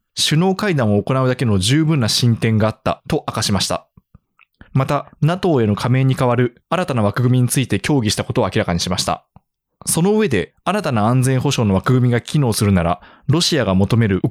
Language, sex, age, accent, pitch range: Japanese, male, 20-39, native, 105-155 Hz